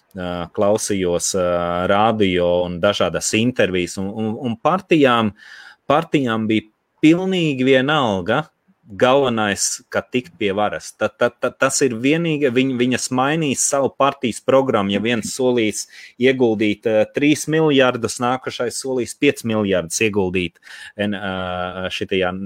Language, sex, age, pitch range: English, male, 30-49, 100-130 Hz